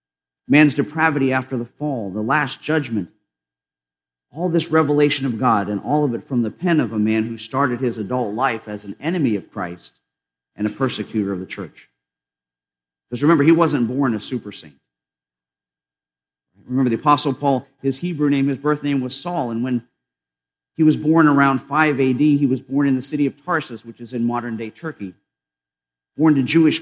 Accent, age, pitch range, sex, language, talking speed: American, 50-69, 115-150 Hz, male, English, 185 wpm